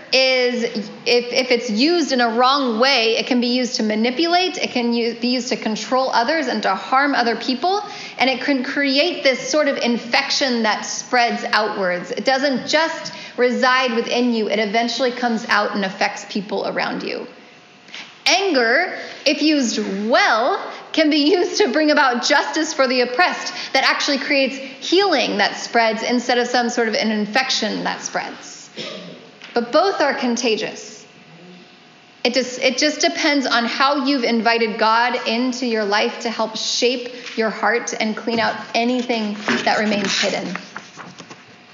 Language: English